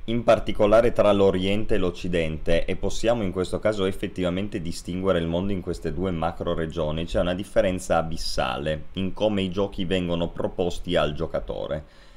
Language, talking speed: Italian, 160 wpm